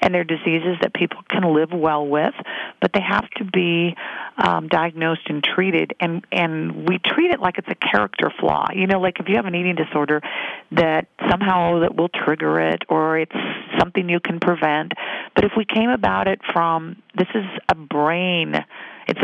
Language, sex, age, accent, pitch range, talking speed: English, female, 50-69, American, 155-185 Hz, 190 wpm